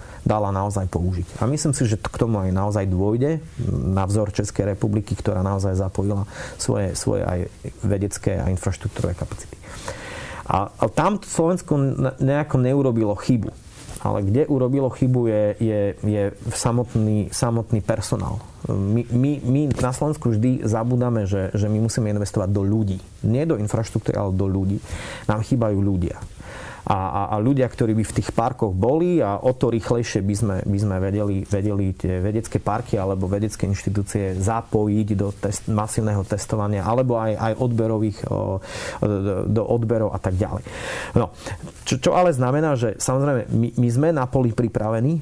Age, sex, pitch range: 30-49, male, 100-125 Hz